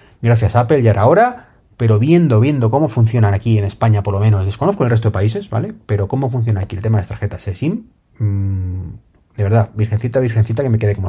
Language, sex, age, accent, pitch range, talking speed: Spanish, male, 30-49, Spanish, 105-130 Hz, 220 wpm